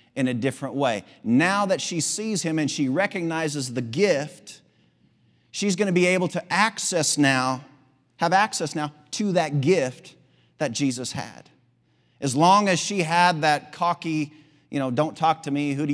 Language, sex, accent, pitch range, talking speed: English, male, American, 110-150 Hz, 175 wpm